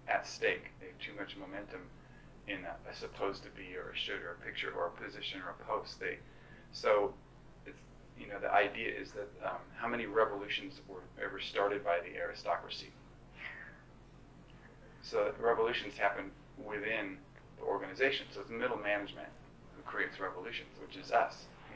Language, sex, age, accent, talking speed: English, male, 40-59, American, 170 wpm